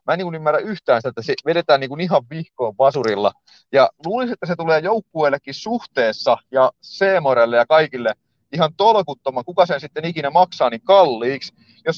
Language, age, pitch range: Finnish, 30-49, 130-180 Hz